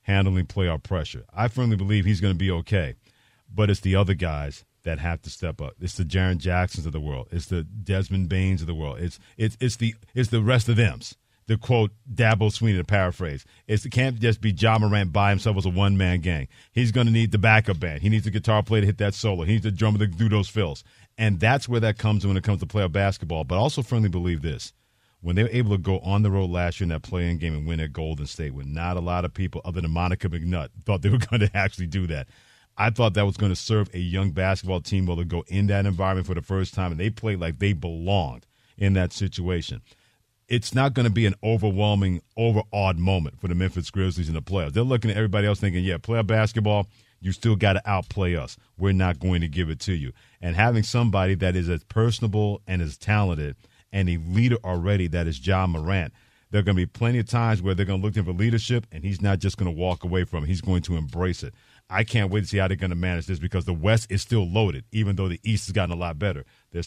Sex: male